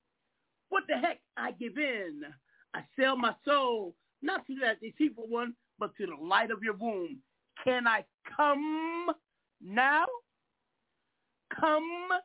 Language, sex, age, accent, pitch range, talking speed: English, male, 50-69, American, 235-310 Hz, 130 wpm